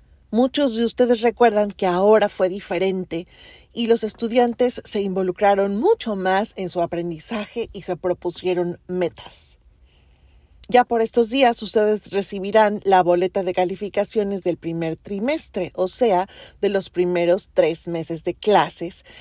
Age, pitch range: 40-59, 170-215 Hz